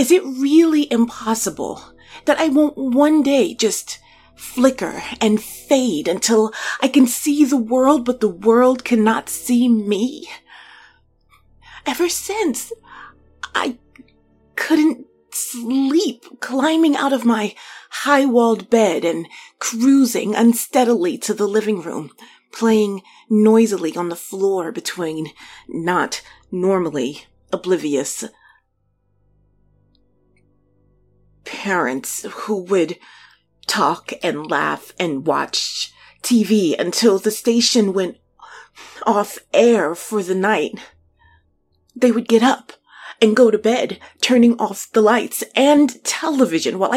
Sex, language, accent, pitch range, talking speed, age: female, English, American, 215-285 Hz, 105 wpm, 30-49